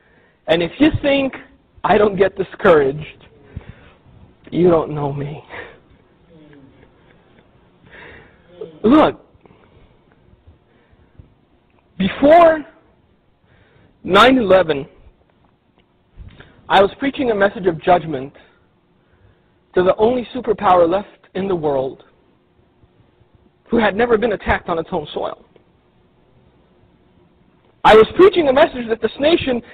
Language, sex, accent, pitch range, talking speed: English, male, American, 180-275 Hz, 95 wpm